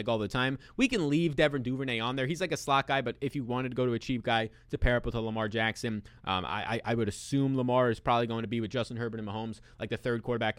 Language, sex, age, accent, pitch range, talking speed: English, male, 20-39, American, 115-160 Hz, 300 wpm